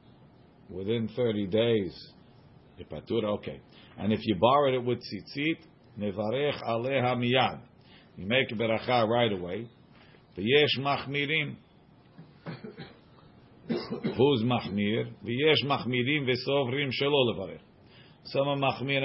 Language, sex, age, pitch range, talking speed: English, male, 50-69, 110-135 Hz, 70 wpm